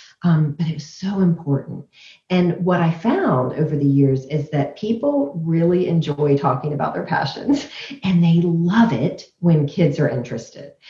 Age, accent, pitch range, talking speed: 40-59, American, 145-185 Hz, 165 wpm